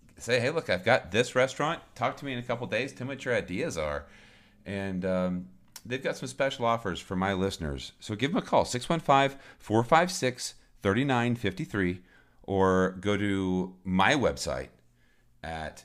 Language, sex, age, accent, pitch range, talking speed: English, male, 40-59, American, 80-110 Hz, 165 wpm